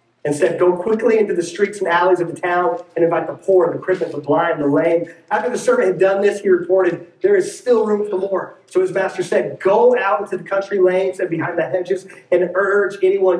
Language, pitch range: English, 150-185 Hz